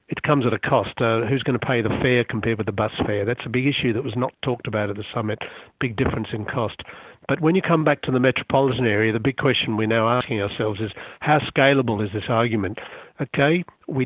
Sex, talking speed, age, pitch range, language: male, 245 wpm, 60-79, 115-140 Hz, English